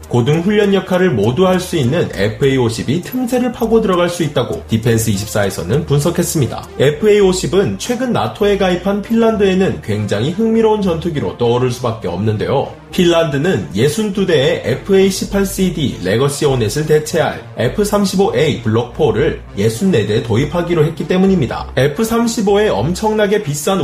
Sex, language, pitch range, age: male, Korean, 130-195 Hz, 30-49